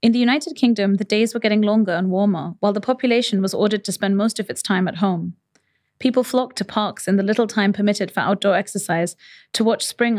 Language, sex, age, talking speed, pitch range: English, female, 30-49, 230 wpm, 180-215 Hz